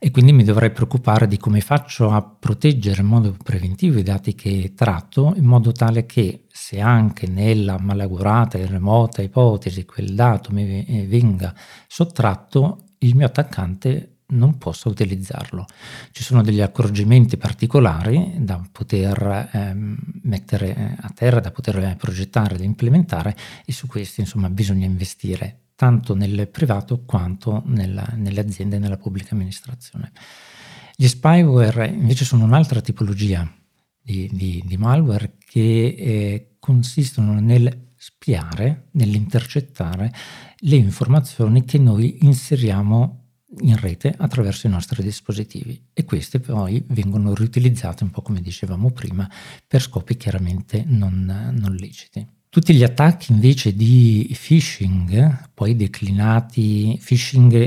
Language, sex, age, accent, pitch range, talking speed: Italian, male, 50-69, native, 100-125 Hz, 130 wpm